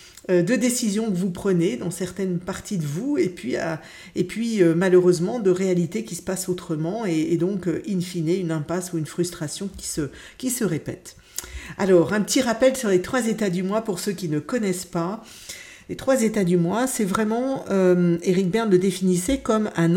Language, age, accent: French, 50-69, French